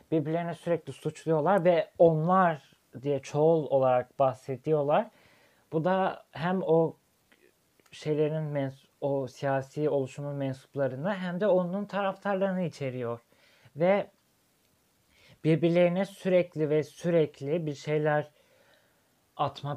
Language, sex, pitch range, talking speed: Turkish, male, 140-175 Hz, 95 wpm